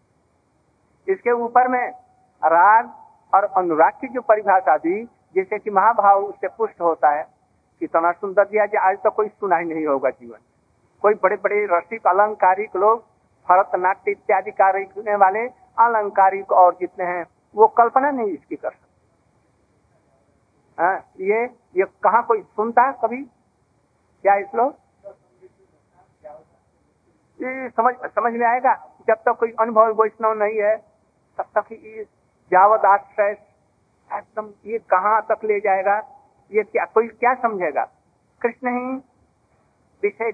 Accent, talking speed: native, 125 wpm